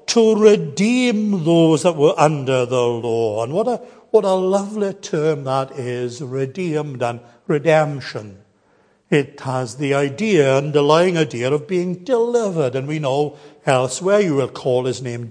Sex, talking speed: male, 155 wpm